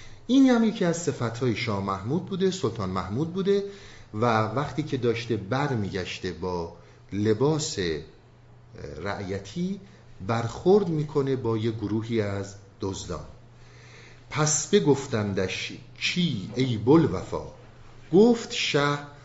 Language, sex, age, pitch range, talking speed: Persian, male, 50-69, 110-150 Hz, 110 wpm